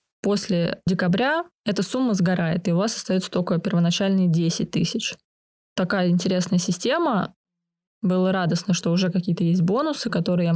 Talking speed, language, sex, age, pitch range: 140 wpm, Russian, female, 20-39, 175-205 Hz